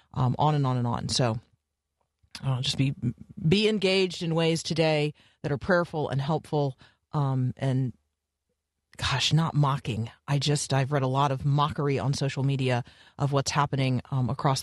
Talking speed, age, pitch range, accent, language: 170 wpm, 40-59, 135-180 Hz, American, English